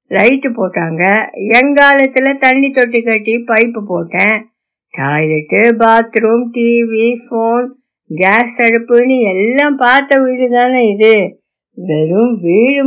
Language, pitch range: Tamil, 180-245 Hz